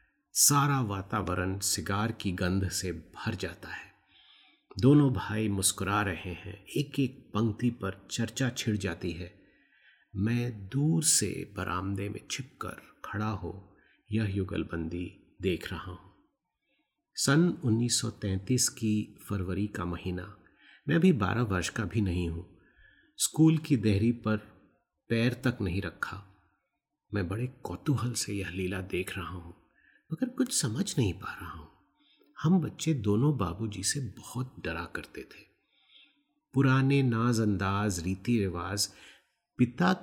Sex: male